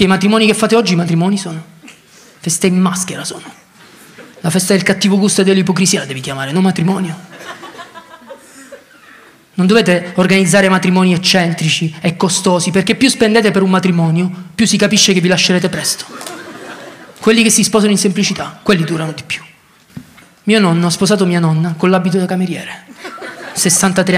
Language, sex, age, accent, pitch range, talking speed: Italian, male, 20-39, native, 180-210 Hz, 160 wpm